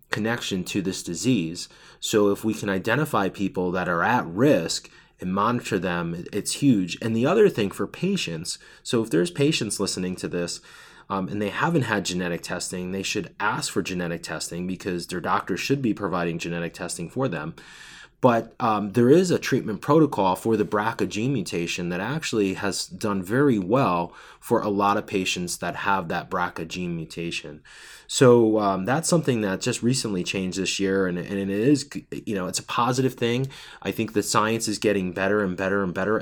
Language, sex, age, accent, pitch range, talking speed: English, male, 20-39, American, 95-115 Hz, 190 wpm